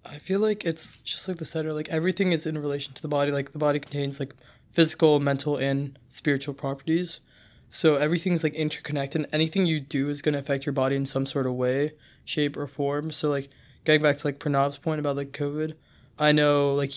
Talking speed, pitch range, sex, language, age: 215 wpm, 130-150 Hz, male, English, 20-39